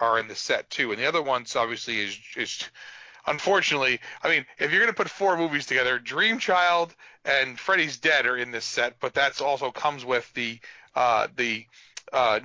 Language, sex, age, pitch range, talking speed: English, male, 40-59, 125-170 Hz, 200 wpm